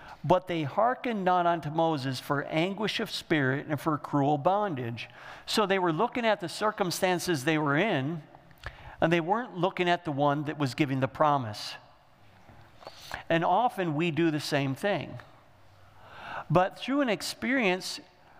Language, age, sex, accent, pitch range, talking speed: English, 50-69, male, American, 130-170 Hz, 155 wpm